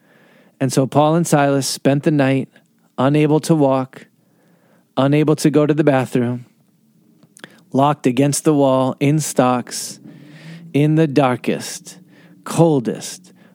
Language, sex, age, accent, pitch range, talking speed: English, male, 40-59, American, 125-170 Hz, 120 wpm